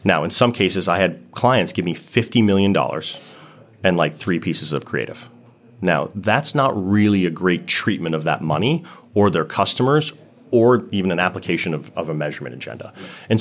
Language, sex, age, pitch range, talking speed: English, male, 30-49, 85-110 Hz, 180 wpm